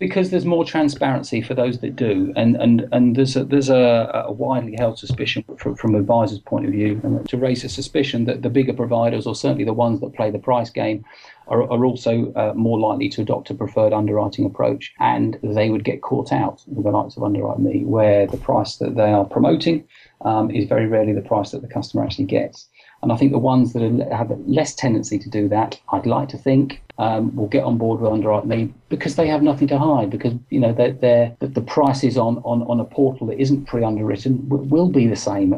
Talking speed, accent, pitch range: 225 wpm, British, 110-140 Hz